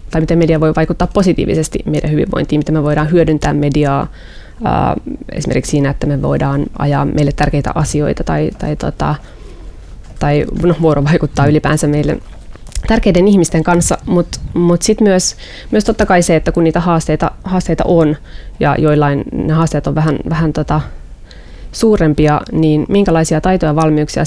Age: 20-39